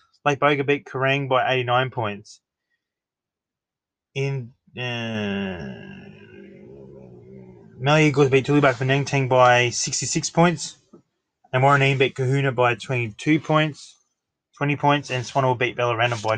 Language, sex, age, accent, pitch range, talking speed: English, male, 20-39, Australian, 125-150 Hz, 110 wpm